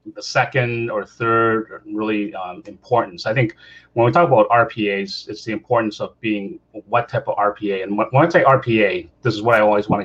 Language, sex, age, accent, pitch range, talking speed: English, male, 30-49, American, 100-120 Hz, 210 wpm